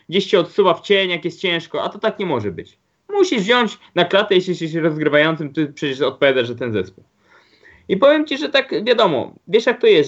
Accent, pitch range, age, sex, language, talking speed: native, 155-205 Hz, 20-39, male, Polish, 220 wpm